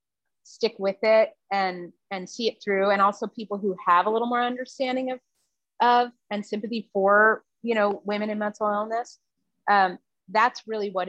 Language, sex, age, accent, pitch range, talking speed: English, female, 30-49, American, 190-245 Hz, 175 wpm